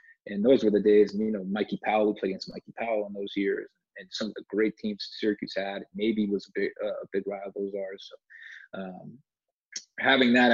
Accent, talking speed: American, 220 wpm